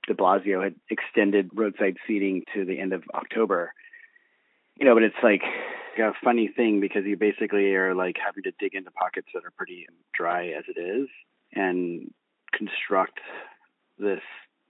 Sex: male